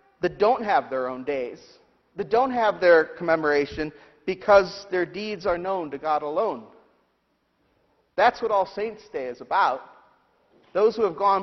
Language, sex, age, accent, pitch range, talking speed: English, male, 40-59, American, 165-220 Hz, 160 wpm